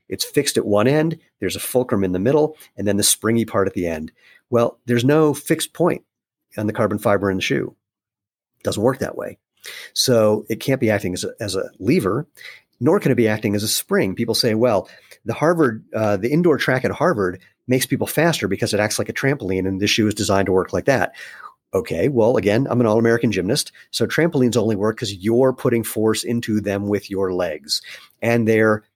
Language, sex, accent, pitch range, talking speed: English, male, American, 100-120 Hz, 220 wpm